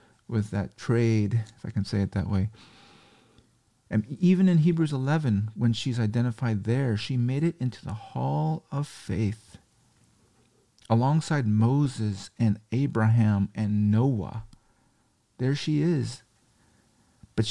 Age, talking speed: 40-59, 125 wpm